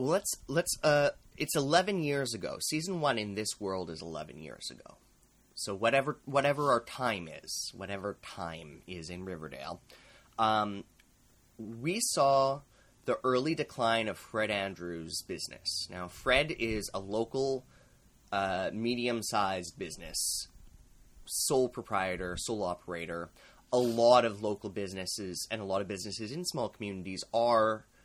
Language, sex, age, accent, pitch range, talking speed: English, male, 20-39, American, 95-125 Hz, 135 wpm